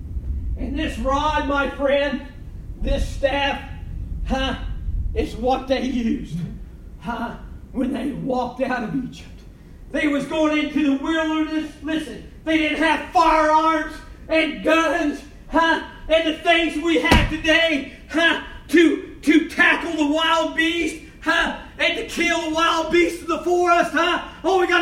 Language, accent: English, American